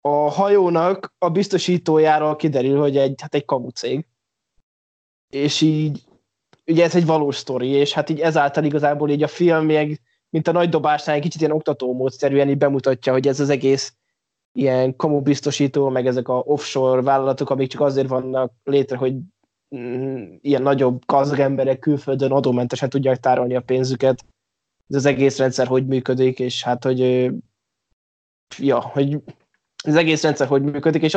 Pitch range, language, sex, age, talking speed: 130-150 Hz, Hungarian, male, 20-39, 155 wpm